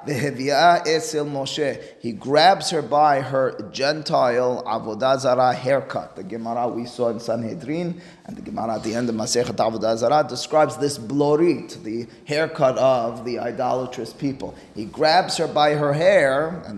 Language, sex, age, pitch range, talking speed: English, male, 30-49, 125-170 Hz, 145 wpm